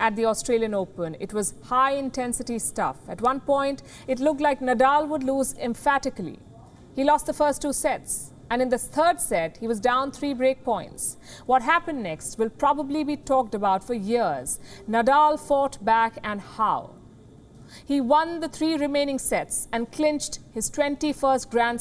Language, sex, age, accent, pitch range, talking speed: English, female, 50-69, Indian, 215-285 Hz, 170 wpm